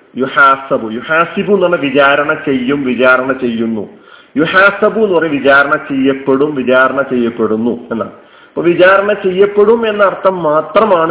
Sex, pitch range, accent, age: male, 135-190 Hz, native, 40-59